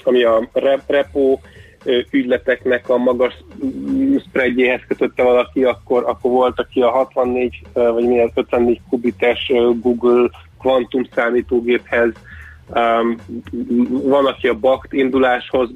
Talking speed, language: 105 wpm, Hungarian